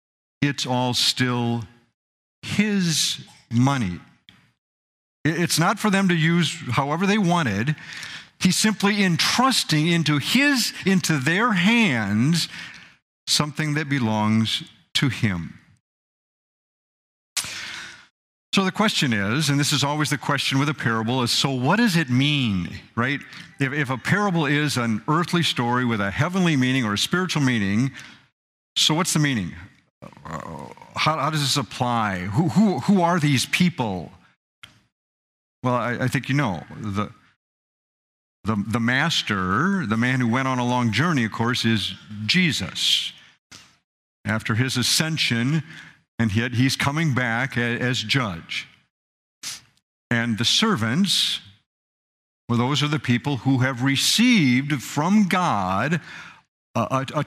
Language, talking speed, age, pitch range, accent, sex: English, 135 wpm, 50-69, 115-165 Hz, American, male